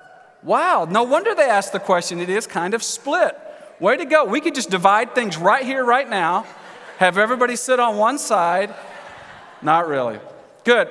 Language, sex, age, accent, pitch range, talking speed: English, male, 40-59, American, 190-245 Hz, 180 wpm